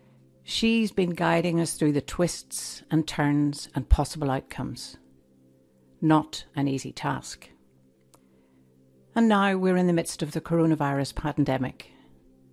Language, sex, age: English, female, 60-79